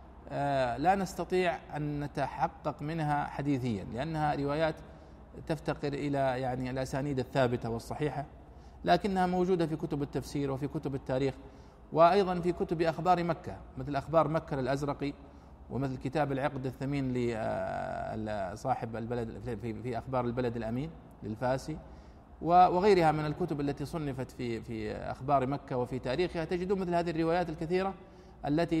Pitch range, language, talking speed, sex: 125-165 Hz, Arabic, 125 wpm, male